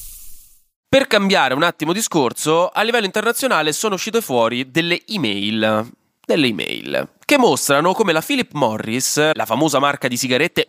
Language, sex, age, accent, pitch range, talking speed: Italian, male, 20-39, native, 120-180 Hz, 145 wpm